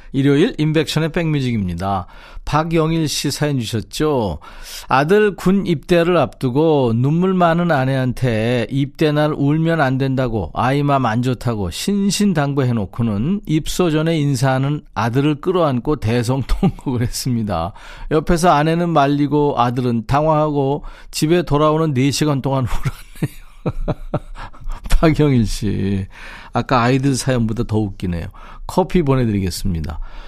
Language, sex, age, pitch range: Korean, male, 40-59, 120-165 Hz